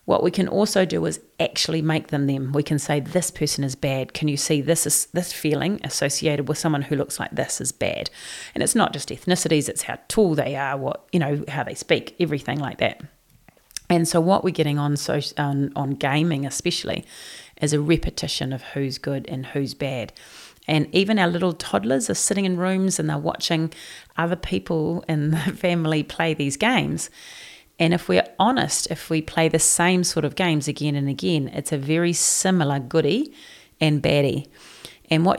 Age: 30-49